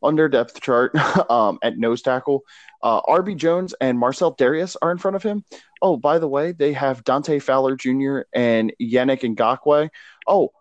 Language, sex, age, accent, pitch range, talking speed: English, male, 20-39, American, 115-140 Hz, 180 wpm